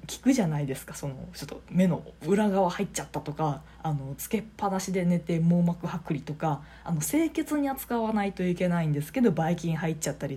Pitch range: 160-245 Hz